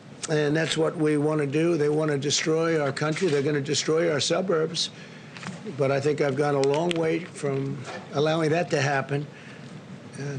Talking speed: 190 wpm